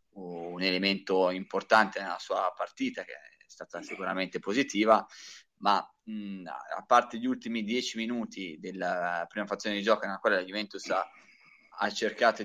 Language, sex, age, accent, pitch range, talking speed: Italian, male, 20-39, native, 100-120 Hz, 145 wpm